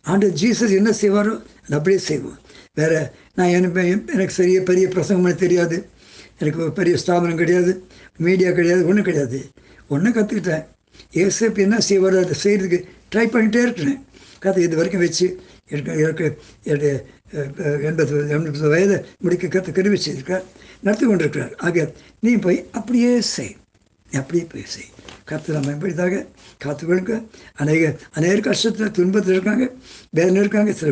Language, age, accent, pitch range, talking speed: Tamil, 60-79, native, 155-195 Hz, 125 wpm